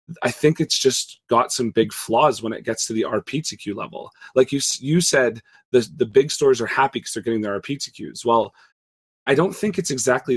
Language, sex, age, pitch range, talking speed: English, male, 30-49, 110-140 Hz, 210 wpm